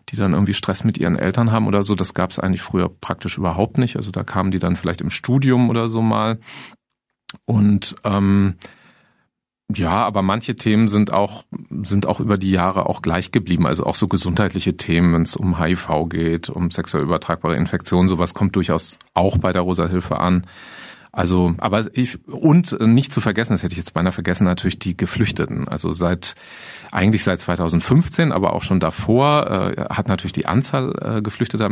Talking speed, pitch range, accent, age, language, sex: 190 wpm, 90-110 Hz, German, 40-59, German, male